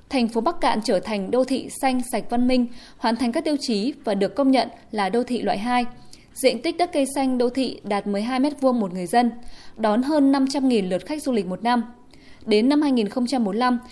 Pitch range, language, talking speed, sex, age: 200-265 Hz, Vietnamese, 215 wpm, female, 20-39